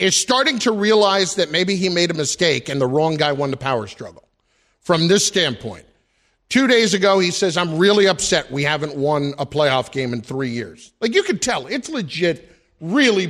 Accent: American